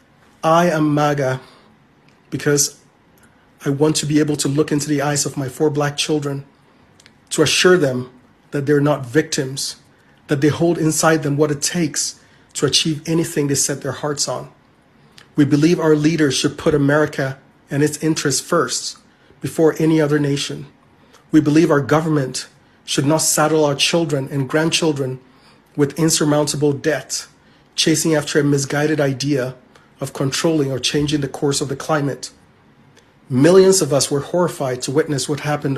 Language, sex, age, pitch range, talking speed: English, male, 30-49, 140-160 Hz, 160 wpm